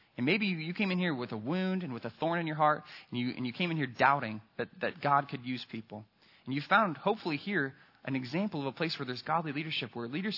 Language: English